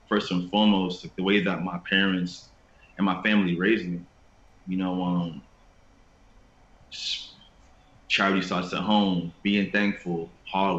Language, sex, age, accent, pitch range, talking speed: English, male, 30-49, American, 90-105 Hz, 135 wpm